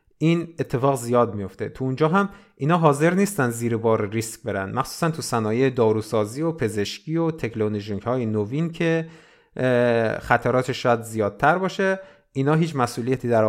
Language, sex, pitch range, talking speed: Persian, male, 115-160 Hz, 145 wpm